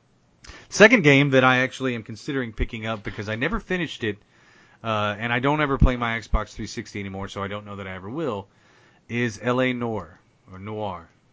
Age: 30-49